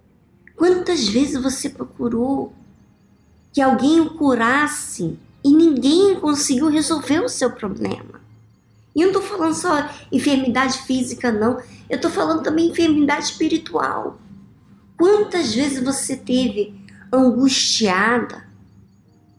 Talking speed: 110 wpm